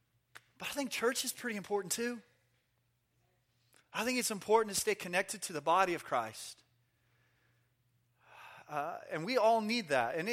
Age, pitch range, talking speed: 30-49, 125-190 Hz, 155 wpm